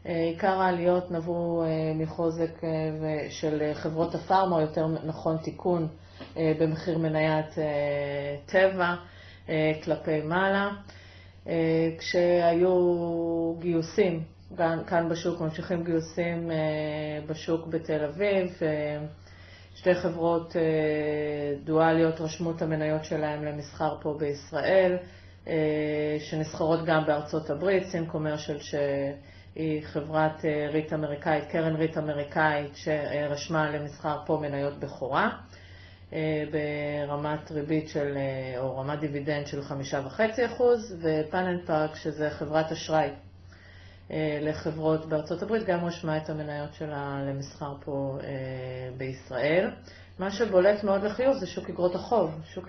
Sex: female